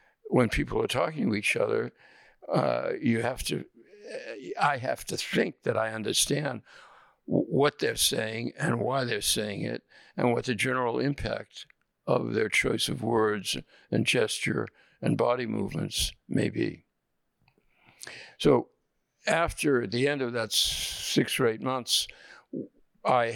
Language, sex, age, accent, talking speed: English, male, 60-79, American, 150 wpm